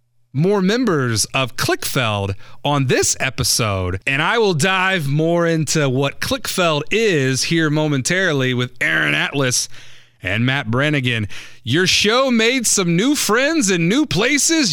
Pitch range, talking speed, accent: 130-210 Hz, 135 wpm, American